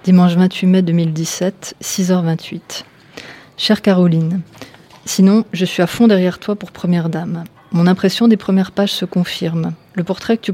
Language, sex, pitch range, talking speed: French, female, 165-185 Hz, 160 wpm